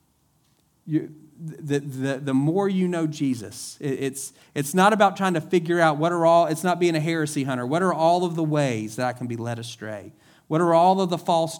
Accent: American